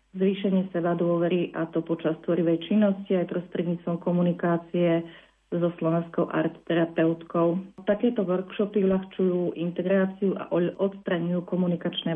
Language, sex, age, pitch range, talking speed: Slovak, female, 40-59, 170-195 Hz, 105 wpm